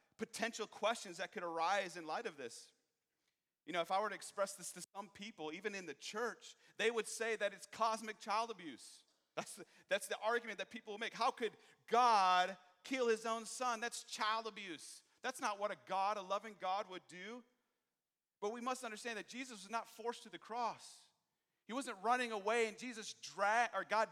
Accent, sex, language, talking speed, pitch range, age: American, male, English, 205 wpm, 140-215 Hz, 40-59